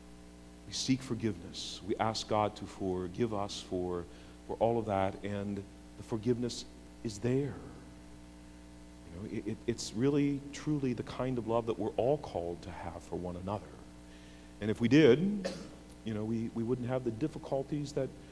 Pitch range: 85-115 Hz